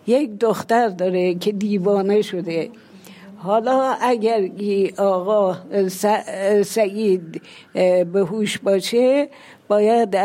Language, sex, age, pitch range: Persian, female, 60-79, 190-225 Hz